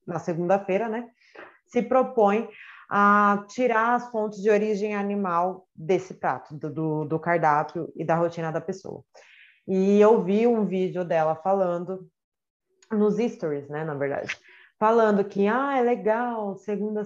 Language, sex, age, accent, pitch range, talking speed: Portuguese, female, 20-39, Brazilian, 175-230 Hz, 140 wpm